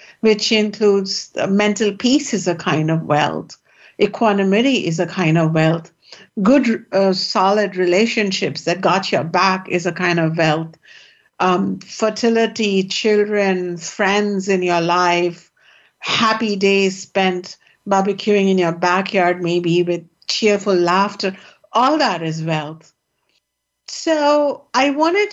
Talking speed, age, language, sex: 125 wpm, 60-79, English, female